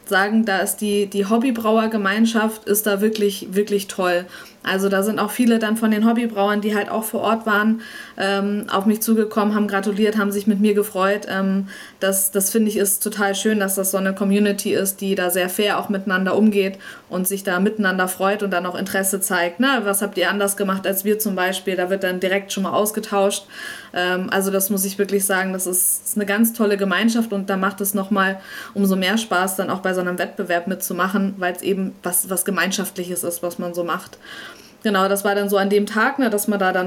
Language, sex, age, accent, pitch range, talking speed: German, female, 20-39, German, 195-215 Hz, 225 wpm